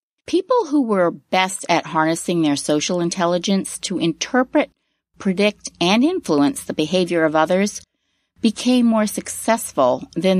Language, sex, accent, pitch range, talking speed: English, female, American, 155-260 Hz, 125 wpm